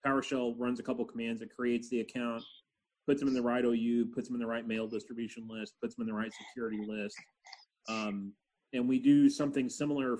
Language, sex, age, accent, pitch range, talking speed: English, male, 30-49, American, 110-130 Hz, 210 wpm